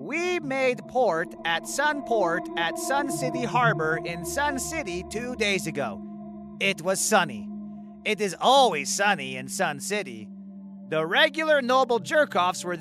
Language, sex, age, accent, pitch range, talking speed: English, male, 30-49, American, 165-235 Hz, 140 wpm